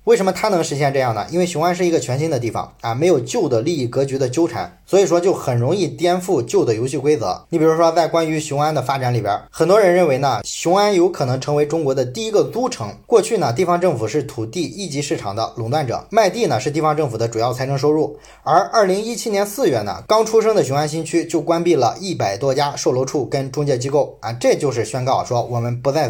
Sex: male